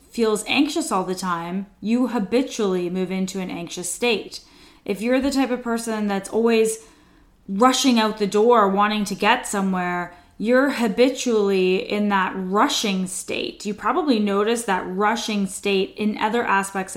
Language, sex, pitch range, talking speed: English, female, 190-235 Hz, 150 wpm